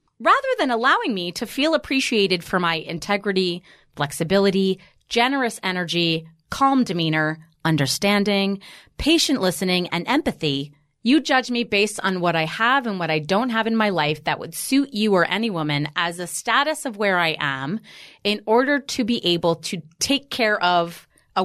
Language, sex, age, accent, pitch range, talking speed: English, female, 30-49, American, 165-225 Hz, 170 wpm